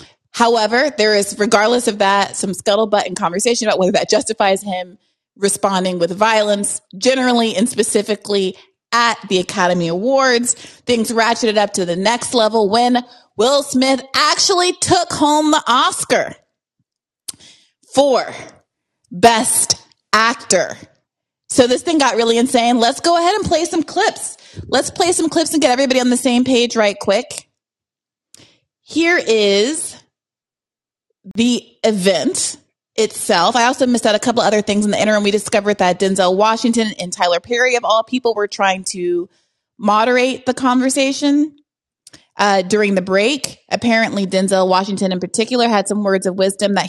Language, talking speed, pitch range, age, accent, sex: English, 150 wpm, 200-250 Hz, 30-49, American, female